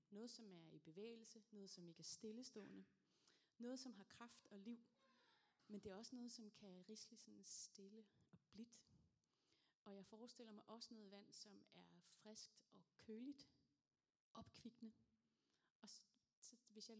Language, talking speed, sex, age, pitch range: Danish, 160 wpm, female, 30-49, 175-215 Hz